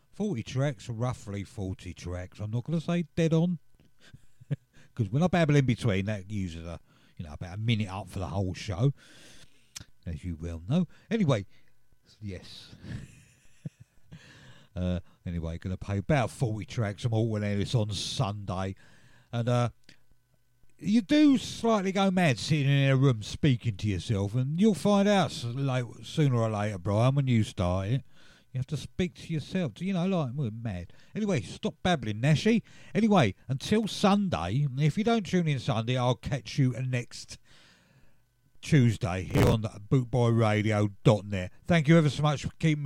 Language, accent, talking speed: English, British, 165 wpm